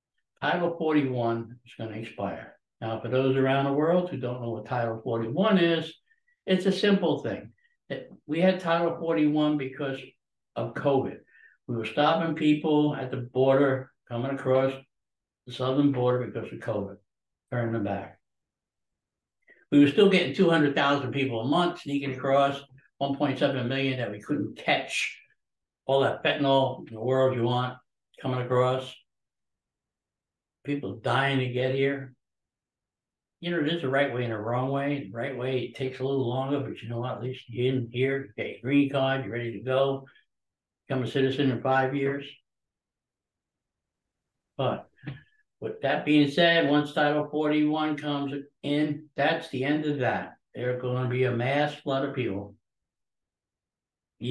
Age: 60-79